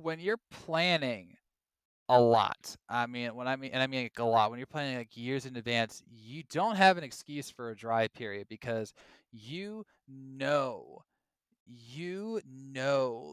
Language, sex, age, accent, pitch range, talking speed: English, male, 20-39, American, 120-150 Hz, 165 wpm